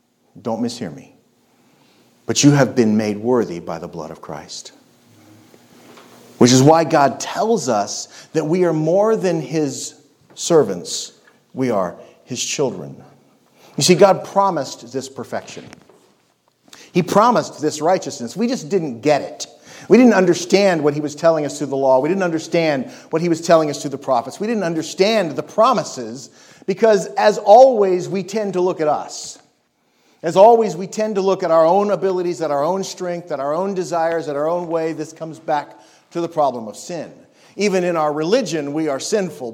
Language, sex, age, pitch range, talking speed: English, male, 40-59, 135-185 Hz, 180 wpm